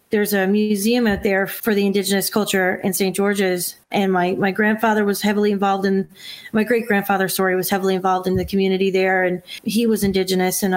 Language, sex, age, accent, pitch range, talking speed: English, female, 30-49, American, 195-235 Hz, 200 wpm